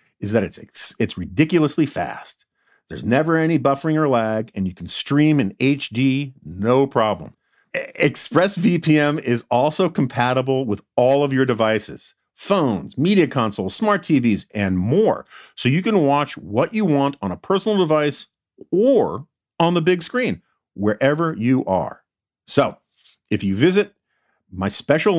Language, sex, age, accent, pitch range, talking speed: English, male, 50-69, American, 115-165 Hz, 150 wpm